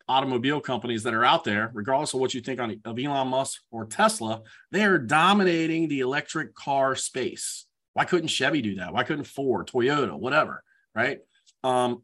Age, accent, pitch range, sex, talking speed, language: 30-49, American, 120-145 Hz, male, 180 wpm, English